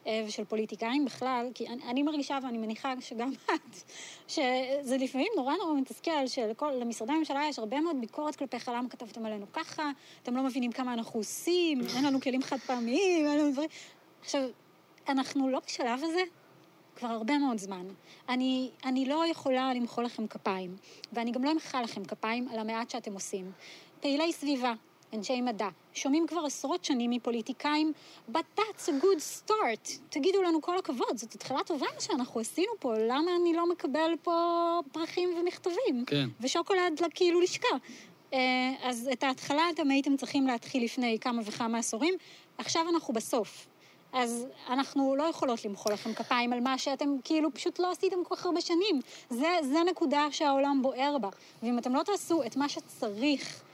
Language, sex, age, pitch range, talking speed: Hebrew, female, 20-39, 240-320 Hz, 160 wpm